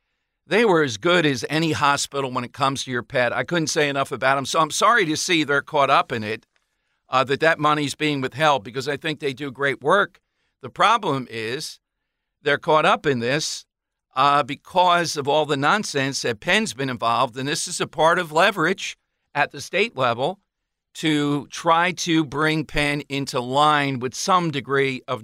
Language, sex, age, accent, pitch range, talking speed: English, male, 50-69, American, 135-160 Hz, 195 wpm